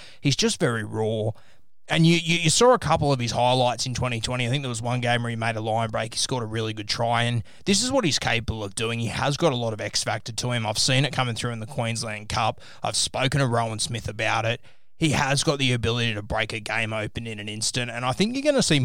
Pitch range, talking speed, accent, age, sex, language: 115-135 Hz, 275 wpm, Australian, 20-39, male, English